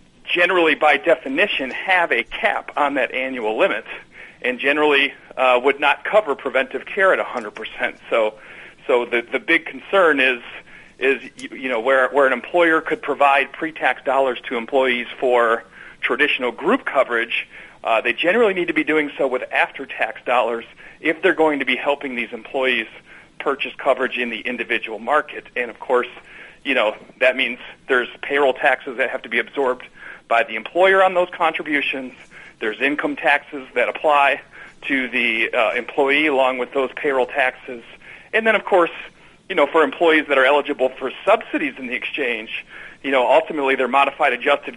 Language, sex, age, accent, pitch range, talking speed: English, male, 40-59, American, 130-155 Hz, 170 wpm